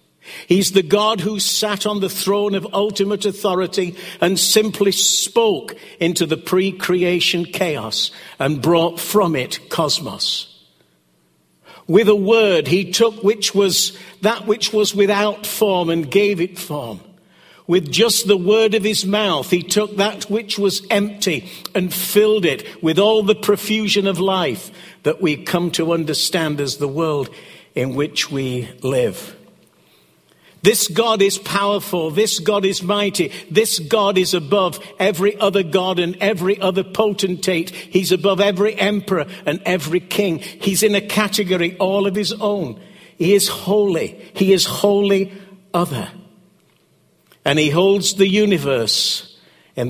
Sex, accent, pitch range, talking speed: male, British, 170-205 Hz, 145 wpm